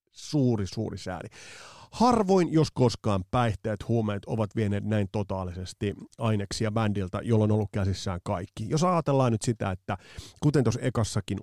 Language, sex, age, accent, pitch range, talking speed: Finnish, male, 30-49, native, 105-135 Hz, 140 wpm